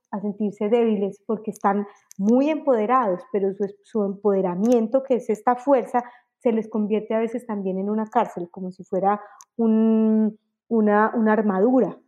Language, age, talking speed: Spanish, 30-49, 155 wpm